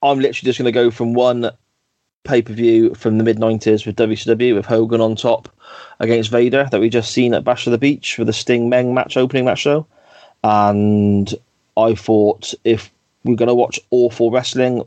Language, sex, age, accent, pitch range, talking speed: English, male, 30-49, British, 105-120 Hz, 190 wpm